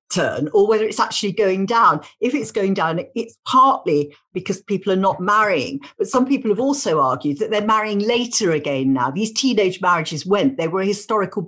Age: 50-69